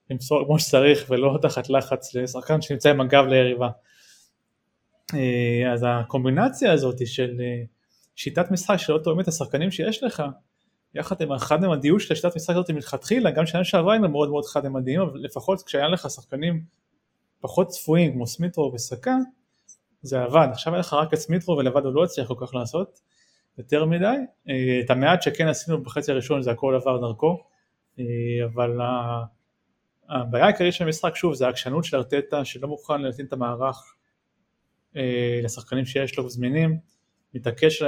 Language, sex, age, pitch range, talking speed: Hebrew, male, 30-49, 130-170 Hz, 150 wpm